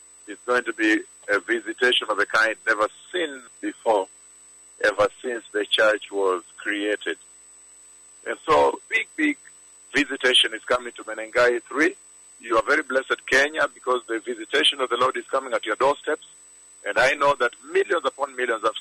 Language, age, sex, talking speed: English, 50-69, male, 165 wpm